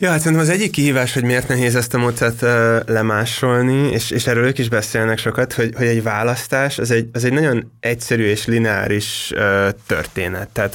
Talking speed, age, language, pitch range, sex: 200 wpm, 20-39, Hungarian, 105-120 Hz, male